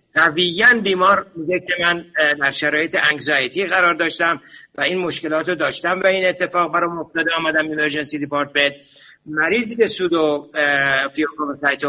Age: 60-79